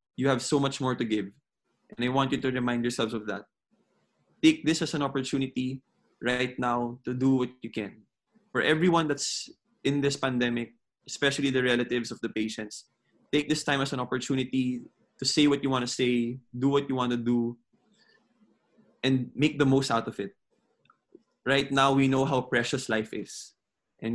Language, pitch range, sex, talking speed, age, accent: English, 120-135 Hz, male, 185 wpm, 20-39, Filipino